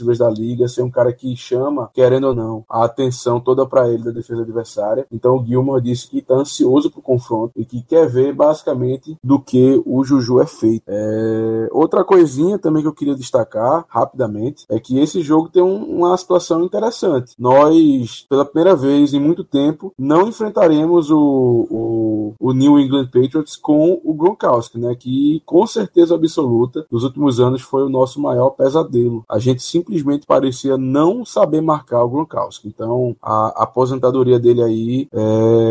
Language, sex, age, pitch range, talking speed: Portuguese, male, 20-39, 120-145 Hz, 175 wpm